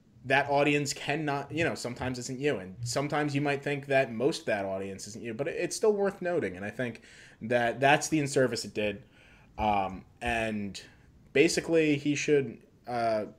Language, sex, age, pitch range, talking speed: English, male, 20-39, 105-140 Hz, 185 wpm